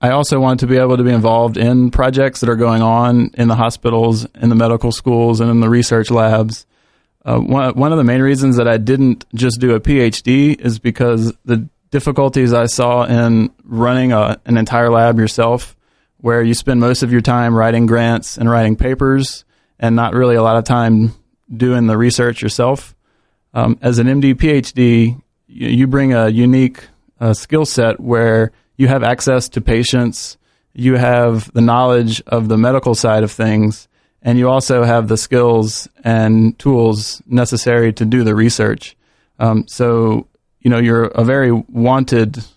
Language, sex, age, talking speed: English, male, 20-39, 175 wpm